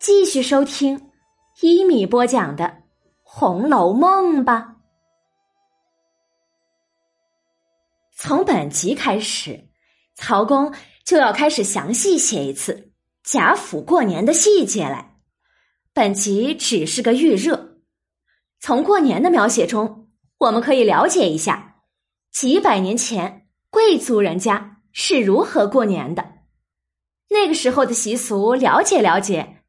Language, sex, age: Chinese, female, 20-39